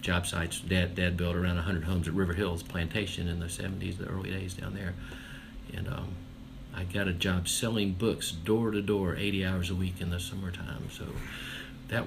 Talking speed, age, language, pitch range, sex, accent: 200 wpm, 50-69, English, 85-95 Hz, male, American